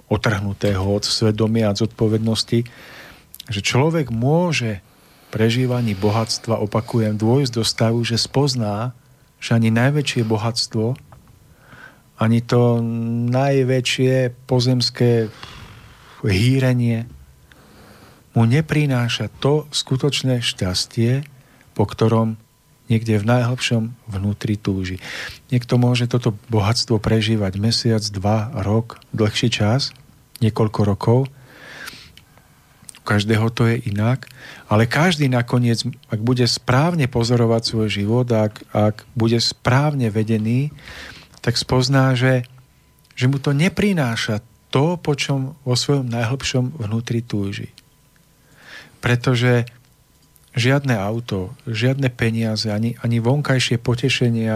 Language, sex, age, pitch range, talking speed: Slovak, male, 40-59, 110-130 Hz, 100 wpm